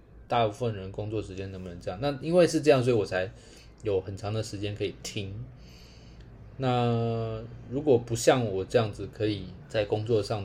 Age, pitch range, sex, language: 20-39, 100-120 Hz, male, Chinese